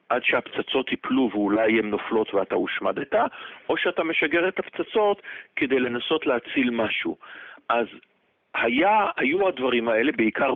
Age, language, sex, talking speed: 50-69, Hebrew, male, 130 wpm